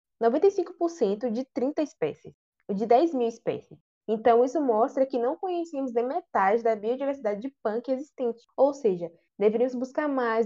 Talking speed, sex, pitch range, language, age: 150 wpm, female, 205-265 Hz, Portuguese, 10-29